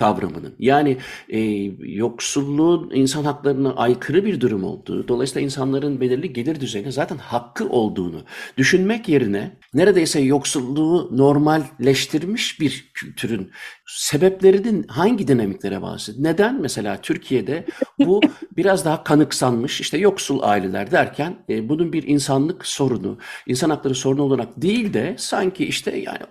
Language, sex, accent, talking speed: Turkish, male, native, 125 wpm